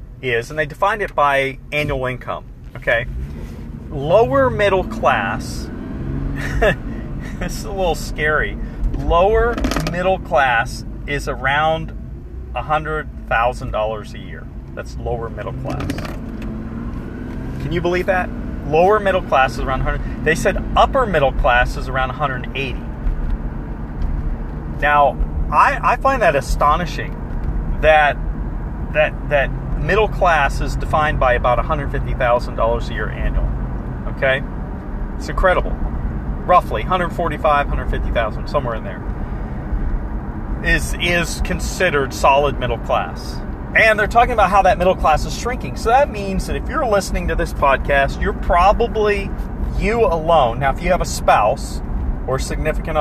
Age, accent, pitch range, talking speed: 40-59, American, 105-155 Hz, 145 wpm